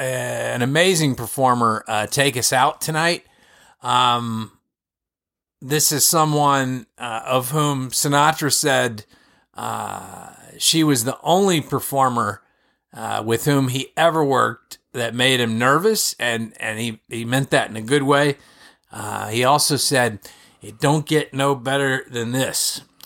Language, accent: English, American